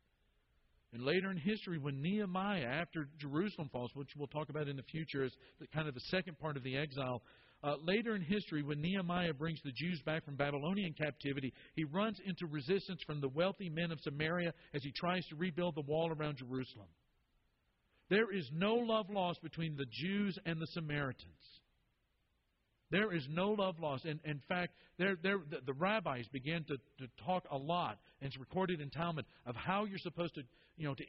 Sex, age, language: male, 50-69, English